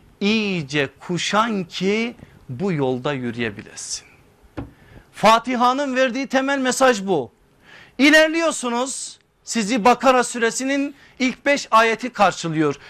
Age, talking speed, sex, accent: 50-69, 90 wpm, male, native